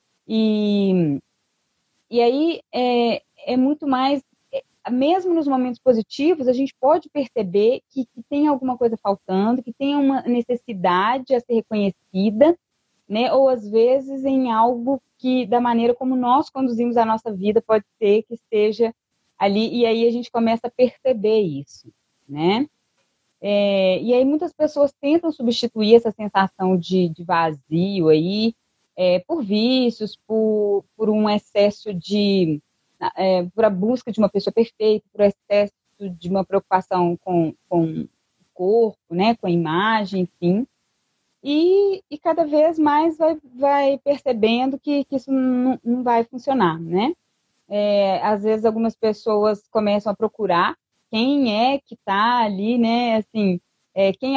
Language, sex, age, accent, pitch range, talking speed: Portuguese, female, 20-39, Brazilian, 200-260 Hz, 140 wpm